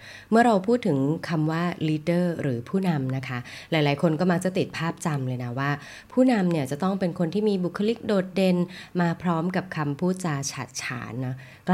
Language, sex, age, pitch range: Thai, female, 20-39, 145-190 Hz